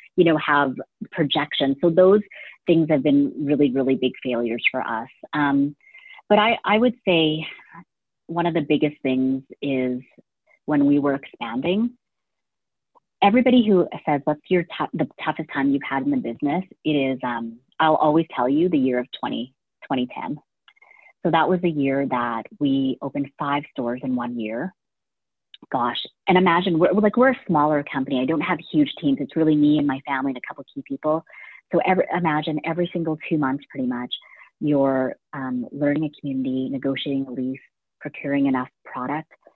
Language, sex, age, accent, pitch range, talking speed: English, female, 30-49, American, 135-165 Hz, 175 wpm